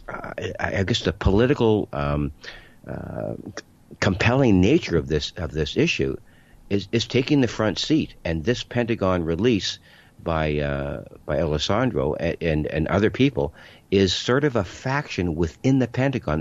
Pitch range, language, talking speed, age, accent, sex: 80-105 Hz, English, 155 wpm, 60-79, American, male